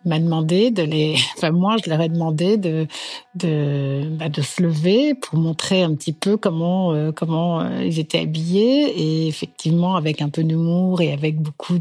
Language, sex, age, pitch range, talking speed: French, female, 60-79, 155-195 Hz, 185 wpm